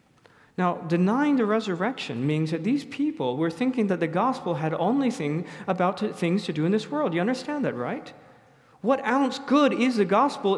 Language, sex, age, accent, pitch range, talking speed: English, male, 40-59, American, 150-230 Hz, 195 wpm